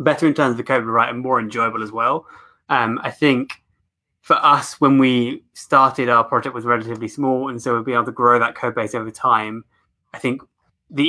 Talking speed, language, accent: 220 wpm, English, British